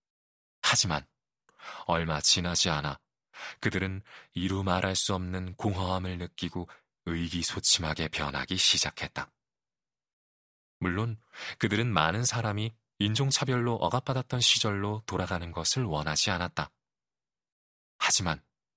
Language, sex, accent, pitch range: Korean, male, native, 85-115 Hz